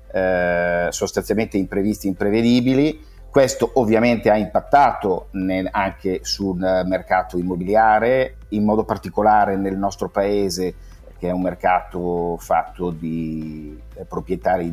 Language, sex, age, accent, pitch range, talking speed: Italian, male, 50-69, native, 95-110 Hz, 100 wpm